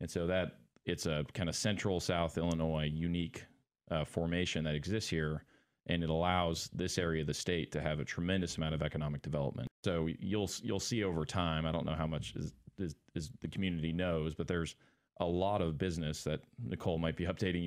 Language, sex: English, male